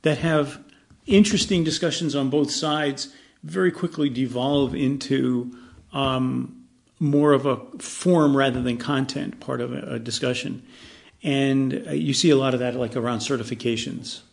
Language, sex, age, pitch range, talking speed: English, male, 40-59, 125-155 Hz, 140 wpm